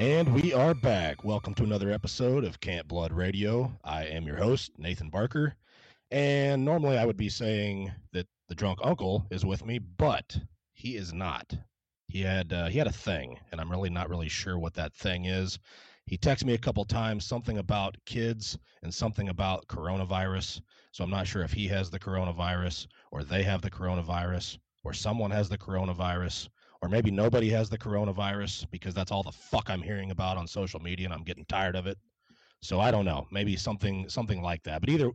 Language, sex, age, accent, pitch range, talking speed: English, male, 30-49, American, 90-110 Hz, 200 wpm